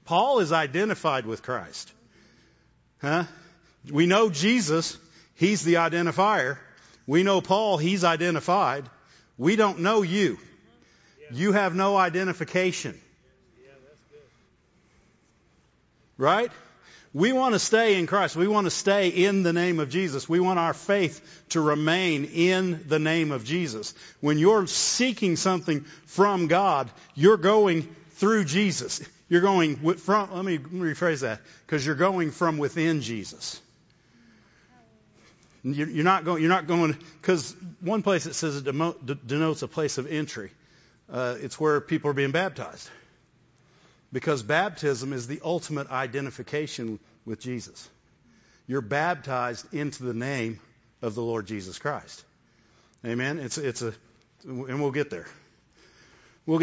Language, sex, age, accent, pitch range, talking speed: English, male, 50-69, American, 140-185 Hz, 135 wpm